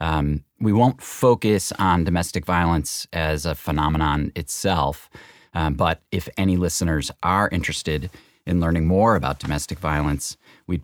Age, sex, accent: 30-49, male, American